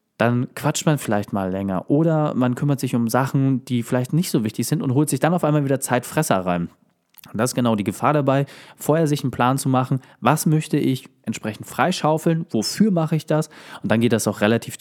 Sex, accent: male, German